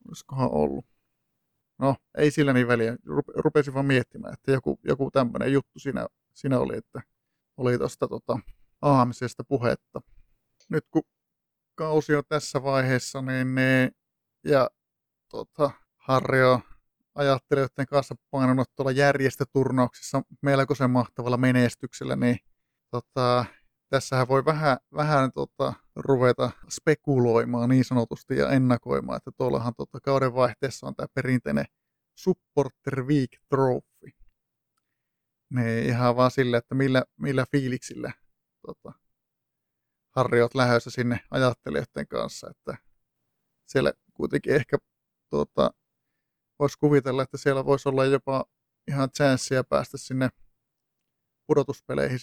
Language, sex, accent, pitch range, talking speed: Finnish, male, native, 125-140 Hz, 115 wpm